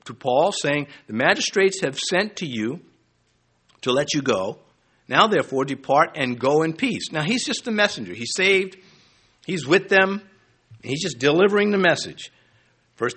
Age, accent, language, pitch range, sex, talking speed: 60-79, American, English, 135-205 Hz, male, 170 wpm